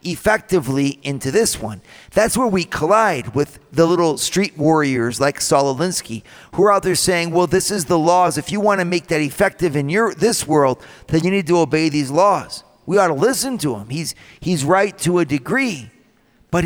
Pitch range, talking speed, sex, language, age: 155-210 Hz, 205 wpm, male, English, 40-59